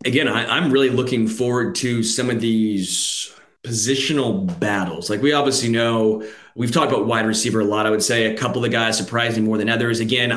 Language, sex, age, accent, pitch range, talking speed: English, male, 30-49, American, 110-120 Hz, 210 wpm